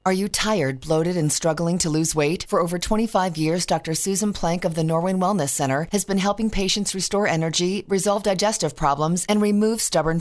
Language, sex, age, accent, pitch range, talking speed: English, female, 40-59, American, 165-210 Hz, 195 wpm